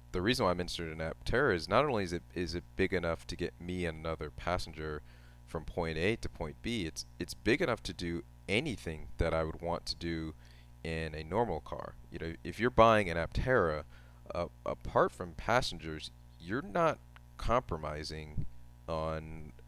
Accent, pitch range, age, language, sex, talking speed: American, 75-85 Hz, 30-49, English, male, 185 wpm